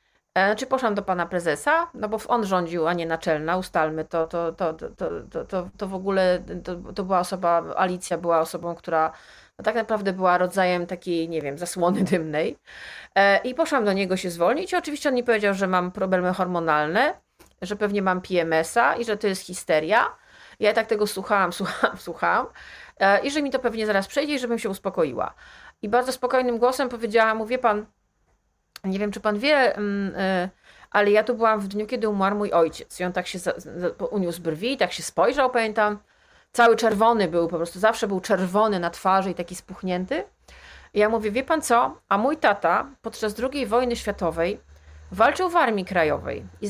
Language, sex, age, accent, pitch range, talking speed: Polish, female, 30-49, native, 175-225 Hz, 185 wpm